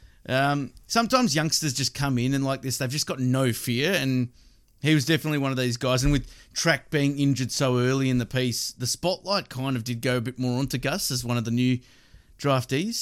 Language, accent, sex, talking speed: English, Australian, male, 225 wpm